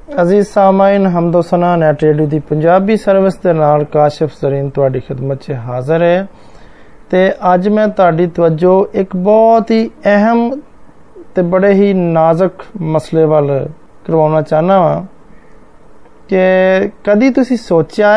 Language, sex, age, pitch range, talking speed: Hindi, male, 20-39, 160-210 Hz, 115 wpm